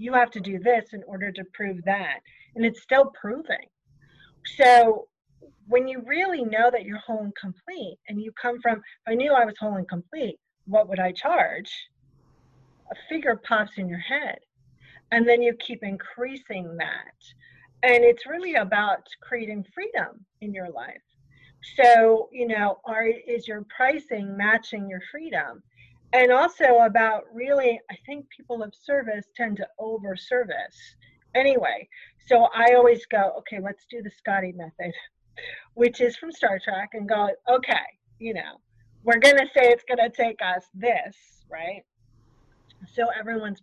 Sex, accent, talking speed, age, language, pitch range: female, American, 160 wpm, 40-59, English, 195-245 Hz